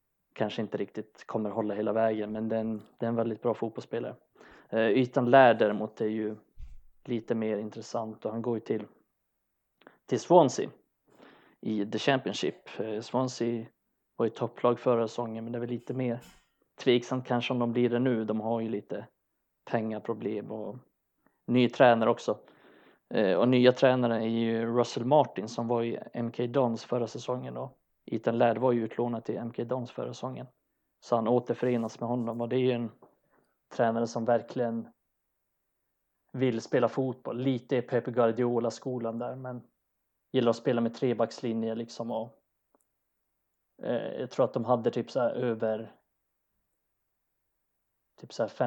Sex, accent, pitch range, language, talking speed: male, native, 110-125 Hz, Swedish, 160 wpm